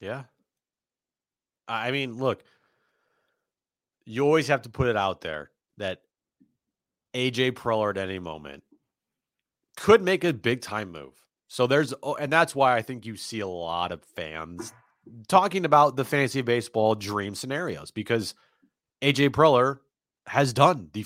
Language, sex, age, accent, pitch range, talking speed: English, male, 30-49, American, 95-135 Hz, 140 wpm